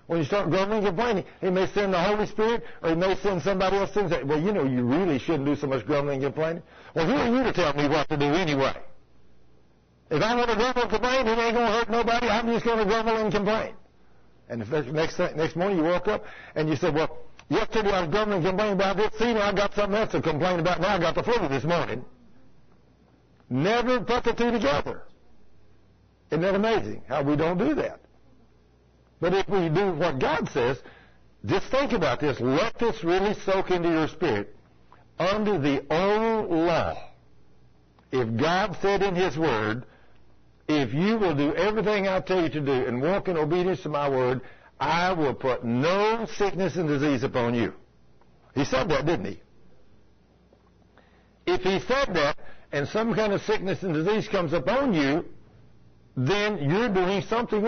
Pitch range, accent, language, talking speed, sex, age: 135-205 Hz, American, English, 195 wpm, male, 60-79